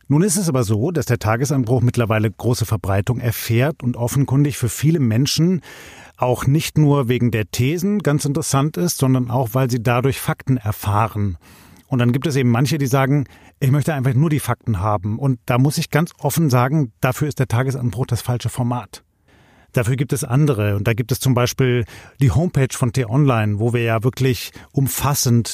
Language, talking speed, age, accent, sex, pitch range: German, 190 wpm, 40-59, German, male, 115-135 Hz